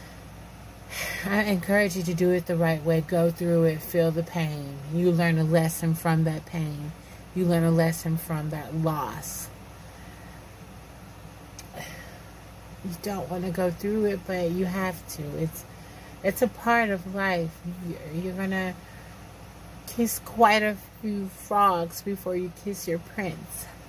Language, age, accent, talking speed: English, 30-49, American, 150 wpm